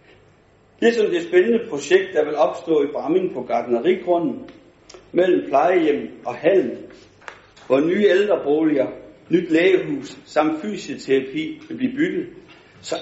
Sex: male